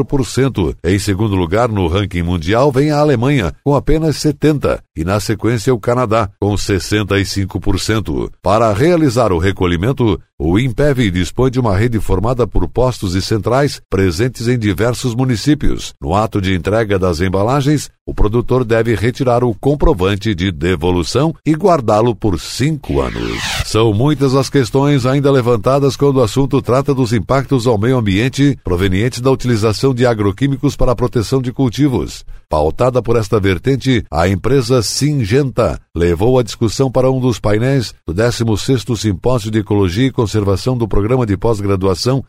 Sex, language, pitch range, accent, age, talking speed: male, Portuguese, 100-130 Hz, Brazilian, 60-79, 150 wpm